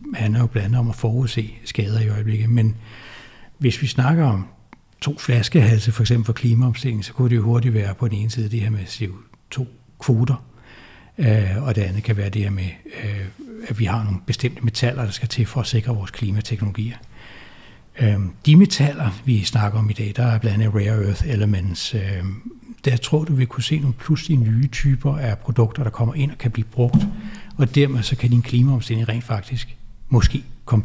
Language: Danish